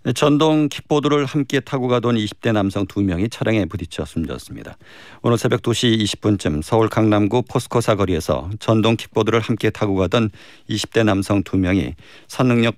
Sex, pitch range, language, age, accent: male, 95-120 Hz, Korean, 50-69, native